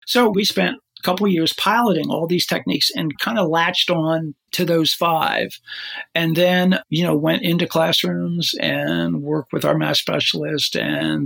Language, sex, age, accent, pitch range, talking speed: English, male, 60-79, American, 145-175 Hz, 175 wpm